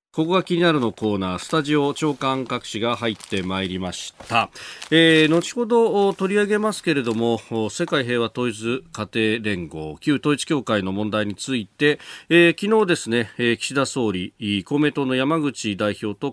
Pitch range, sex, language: 100-135 Hz, male, Japanese